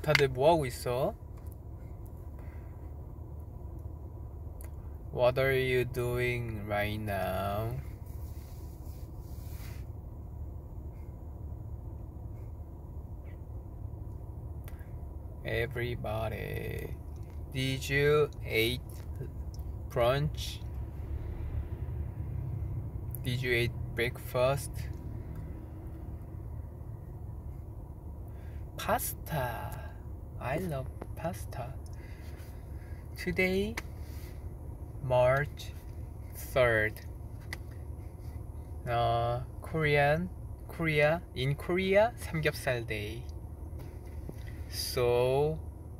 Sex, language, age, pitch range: male, Korean, 20-39, 90-115 Hz